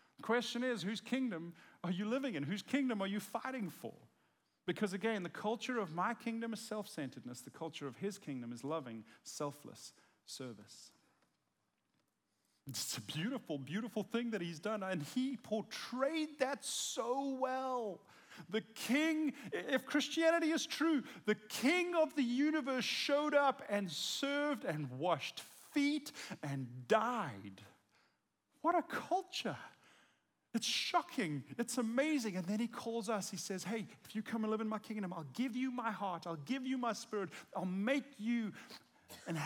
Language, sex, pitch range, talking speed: English, male, 165-255 Hz, 160 wpm